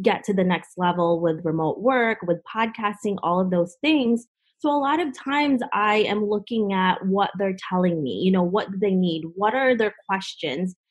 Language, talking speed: English, 205 wpm